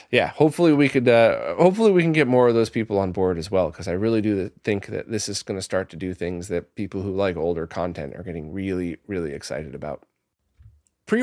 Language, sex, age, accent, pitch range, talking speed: English, male, 30-49, American, 100-130 Hz, 235 wpm